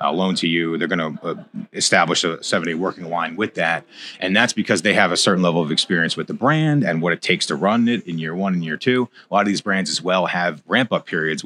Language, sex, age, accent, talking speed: English, male, 30-49, American, 270 wpm